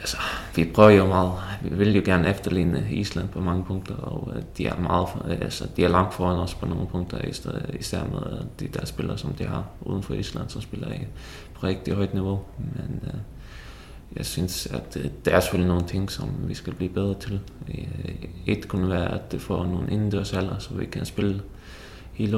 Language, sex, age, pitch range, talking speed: Danish, male, 20-39, 90-105 Hz, 200 wpm